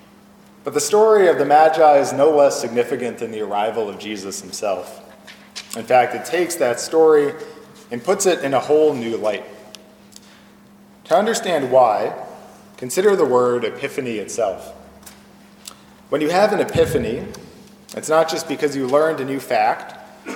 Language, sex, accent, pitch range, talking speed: English, male, American, 125-190 Hz, 155 wpm